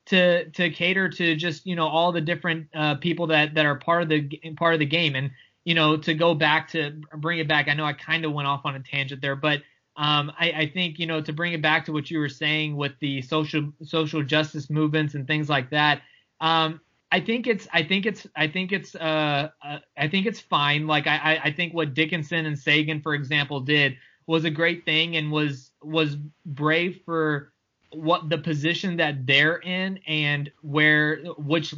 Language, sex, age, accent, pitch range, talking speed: English, male, 20-39, American, 145-170 Hz, 220 wpm